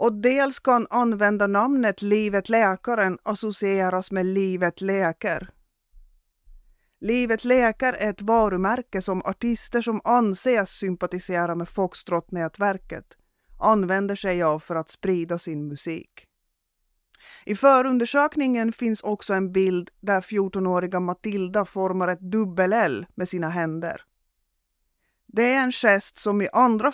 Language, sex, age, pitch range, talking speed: English, female, 30-49, 180-230 Hz, 120 wpm